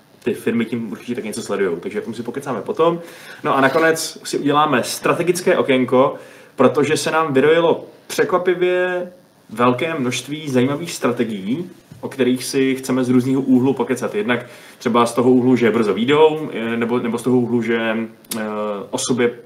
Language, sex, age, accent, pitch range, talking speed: Czech, male, 20-39, native, 120-135 Hz, 155 wpm